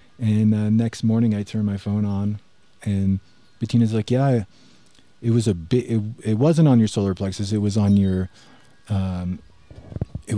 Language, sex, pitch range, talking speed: English, male, 90-110 Hz, 180 wpm